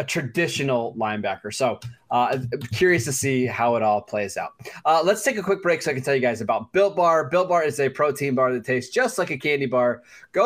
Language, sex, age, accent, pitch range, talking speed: English, male, 20-39, American, 130-165 Hz, 245 wpm